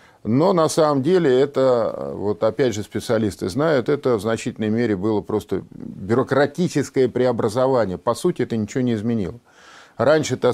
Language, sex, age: Russian, male, 50-69